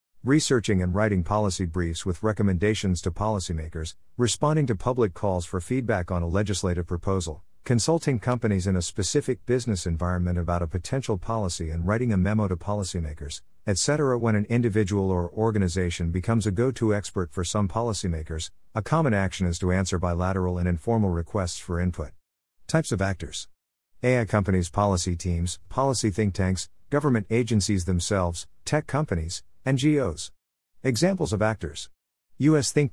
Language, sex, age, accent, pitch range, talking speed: English, male, 50-69, American, 90-115 Hz, 150 wpm